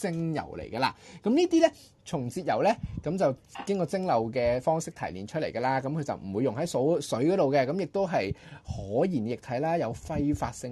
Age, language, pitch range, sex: 20-39, Chinese, 110-160 Hz, male